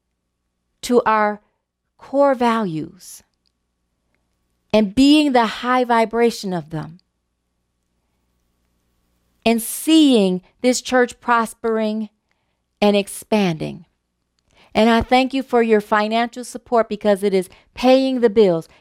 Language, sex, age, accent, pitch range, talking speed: English, female, 40-59, American, 175-230 Hz, 100 wpm